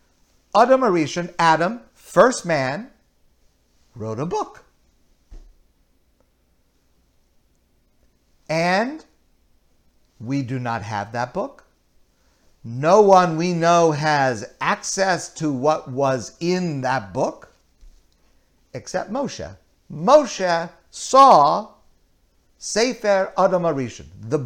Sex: male